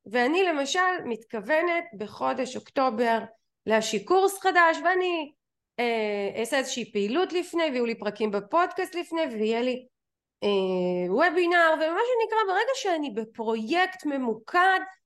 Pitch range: 225-325 Hz